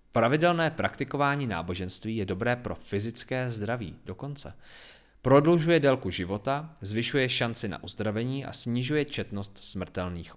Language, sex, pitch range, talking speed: Czech, male, 100-130 Hz, 115 wpm